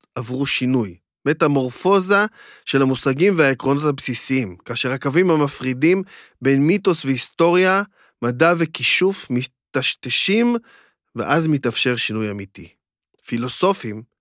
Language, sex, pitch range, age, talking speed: Hebrew, male, 125-160 Hz, 30-49, 90 wpm